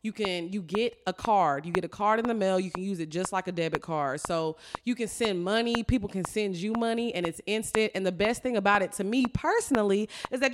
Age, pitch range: 20-39, 195-255 Hz